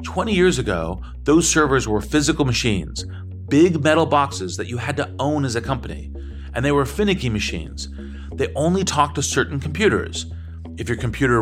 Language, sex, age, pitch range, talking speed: English, male, 40-59, 105-145 Hz, 175 wpm